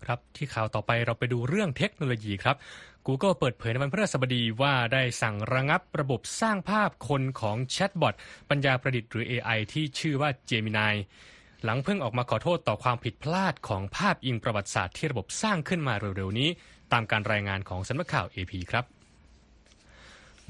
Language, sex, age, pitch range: Thai, male, 20-39, 115-155 Hz